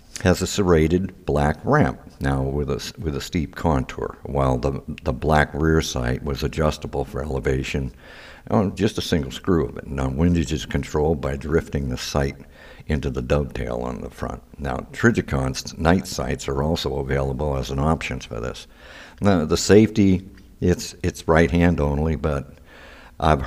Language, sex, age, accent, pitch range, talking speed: English, male, 60-79, American, 70-85 Hz, 165 wpm